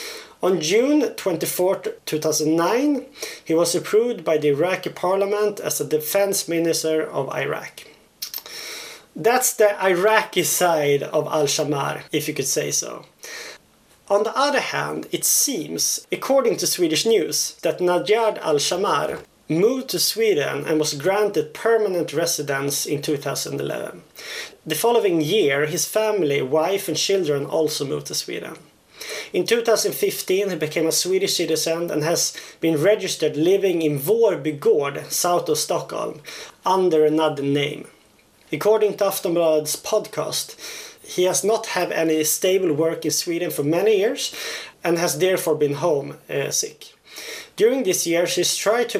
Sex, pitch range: male, 155-215 Hz